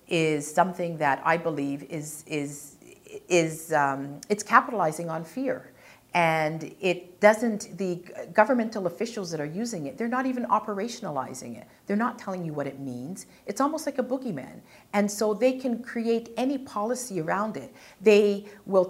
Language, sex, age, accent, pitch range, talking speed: English, female, 50-69, American, 160-225 Hz, 160 wpm